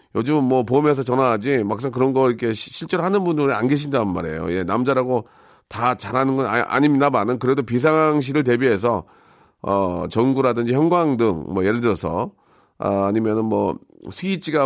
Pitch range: 115-150 Hz